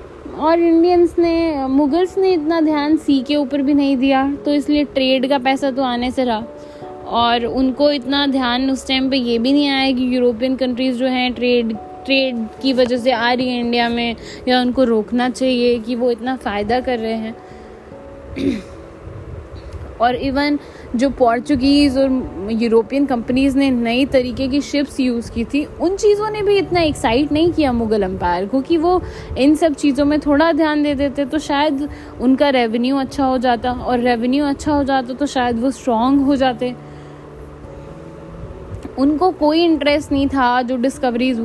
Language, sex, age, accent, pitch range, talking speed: Hindi, female, 20-39, native, 250-290 Hz, 175 wpm